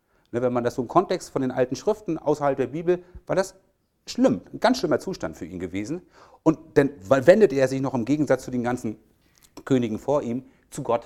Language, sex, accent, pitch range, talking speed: German, male, German, 130-165 Hz, 210 wpm